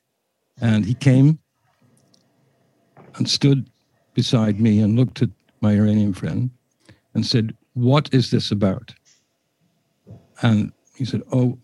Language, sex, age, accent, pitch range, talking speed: English, male, 60-79, American, 110-135 Hz, 120 wpm